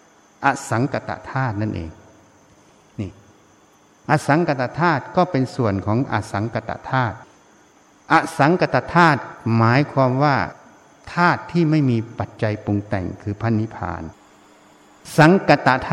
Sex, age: male, 60-79